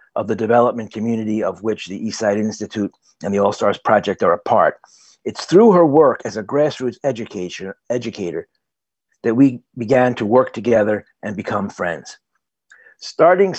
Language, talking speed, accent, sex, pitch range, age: English, 155 wpm, American, male, 115-155 Hz, 50-69